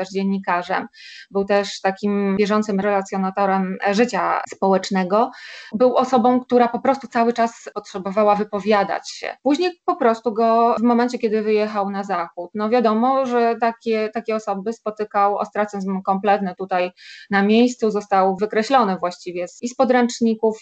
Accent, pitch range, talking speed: native, 195-230 Hz, 135 wpm